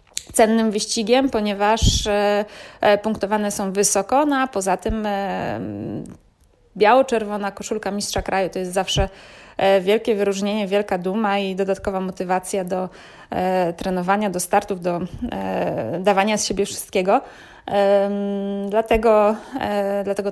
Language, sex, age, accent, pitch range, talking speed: Polish, female, 20-39, native, 190-210 Hz, 105 wpm